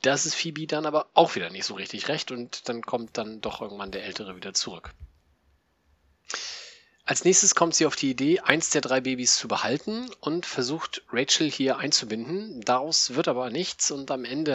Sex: male